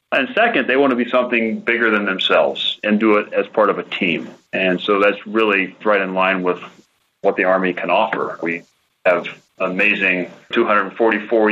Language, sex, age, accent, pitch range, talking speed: English, male, 30-49, American, 95-105 Hz, 180 wpm